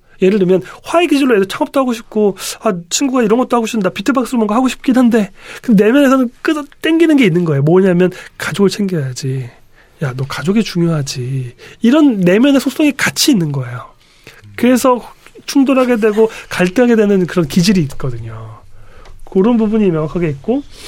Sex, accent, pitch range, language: male, native, 165-245 Hz, Korean